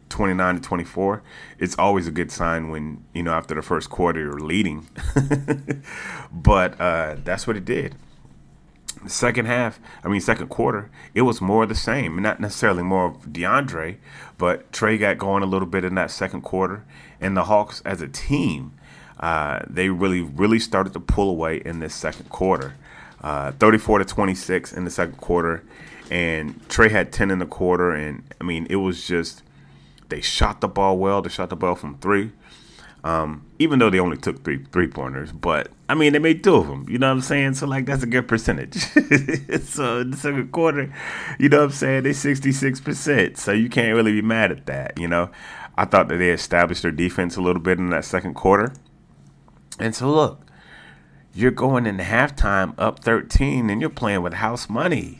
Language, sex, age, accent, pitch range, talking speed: English, male, 30-49, American, 85-125 Hz, 195 wpm